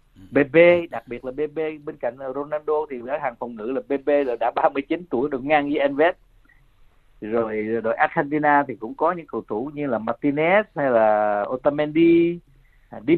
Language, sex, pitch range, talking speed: Vietnamese, male, 115-150 Hz, 175 wpm